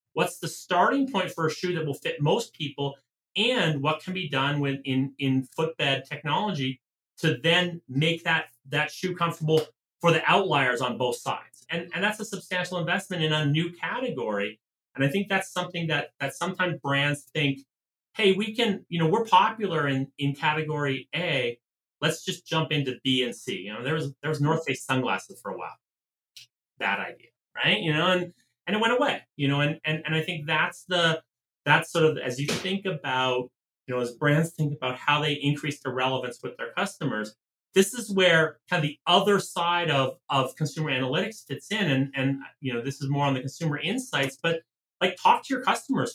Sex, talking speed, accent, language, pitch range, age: male, 205 wpm, American, English, 135-175 Hz, 30-49